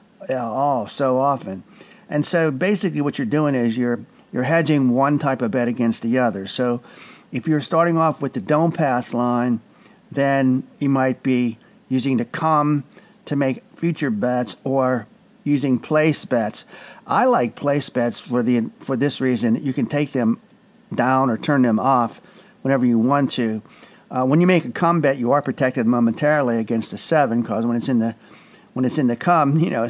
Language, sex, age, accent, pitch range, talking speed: English, male, 50-69, American, 125-165 Hz, 190 wpm